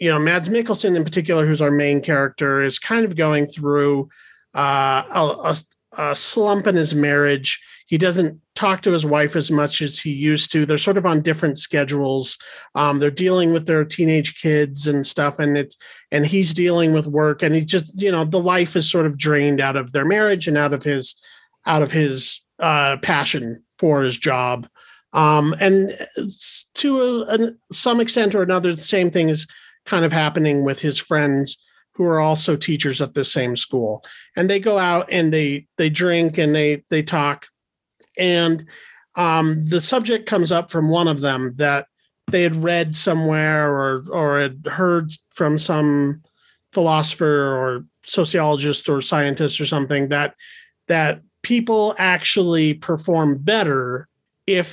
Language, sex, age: English, male, 40-59